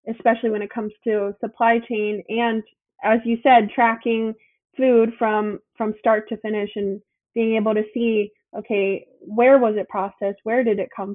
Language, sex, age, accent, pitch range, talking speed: English, female, 20-39, American, 205-240 Hz, 170 wpm